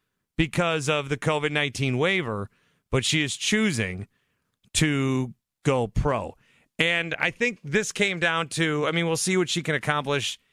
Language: English